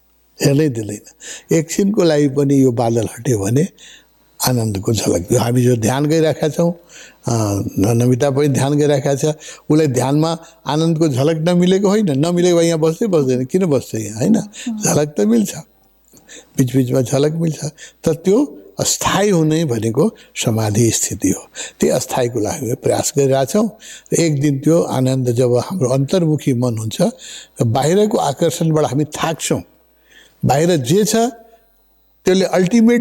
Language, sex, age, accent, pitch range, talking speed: English, male, 60-79, Indian, 130-180 Hz, 85 wpm